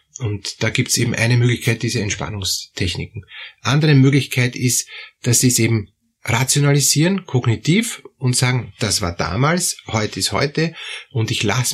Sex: male